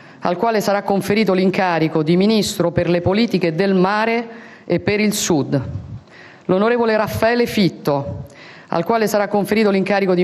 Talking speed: 145 wpm